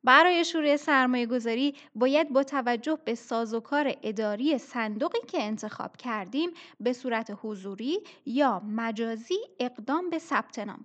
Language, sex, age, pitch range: Persian, female, 10-29, 225-315 Hz